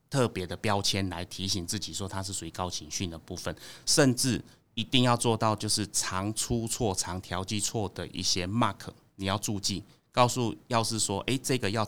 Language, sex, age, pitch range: Chinese, male, 30-49, 90-110 Hz